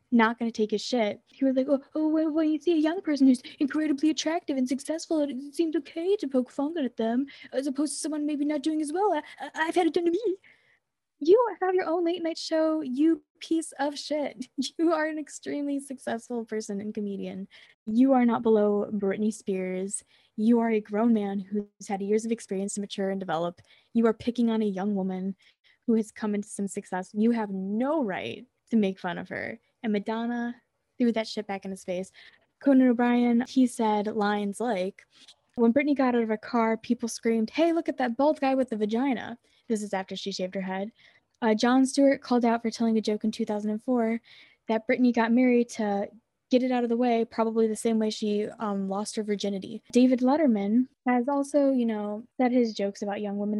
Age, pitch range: 10-29, 205-275 Hz